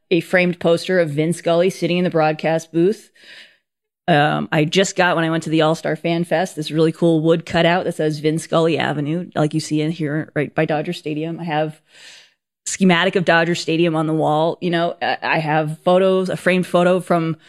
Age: 30-49